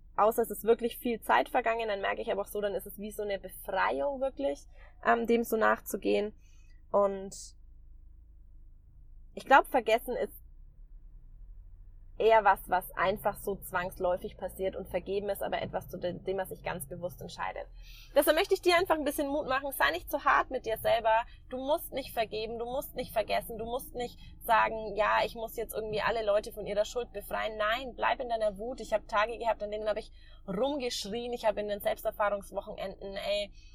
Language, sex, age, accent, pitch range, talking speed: German, female, 20-39, German, 190-240 Hz, 190 wpm